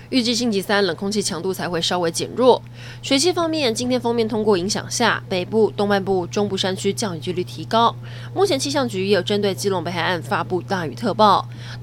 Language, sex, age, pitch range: Chinese, female, 20-39, 165-225 Hz